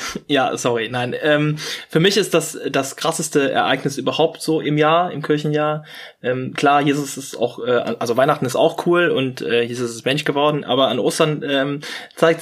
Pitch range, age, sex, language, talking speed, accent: 130-155 Hz, 20-39, male, German, 190 wpm, German